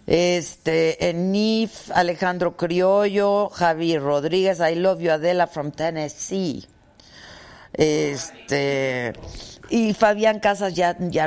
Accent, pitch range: Mexican, 155-210 Hz